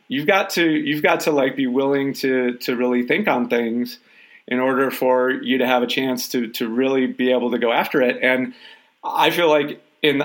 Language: English